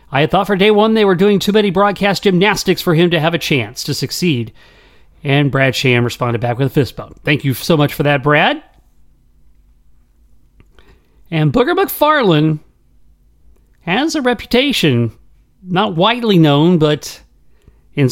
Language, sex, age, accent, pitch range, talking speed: English, male, 40-59, American, 140-200 Hz, 155 wpm